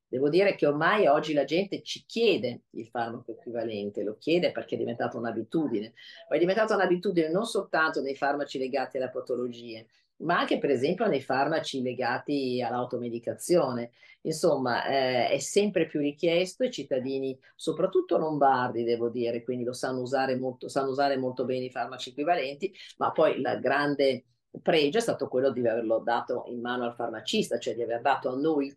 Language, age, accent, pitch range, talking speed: Italian, 40-59, native, 125-160 Hz, 175 wpm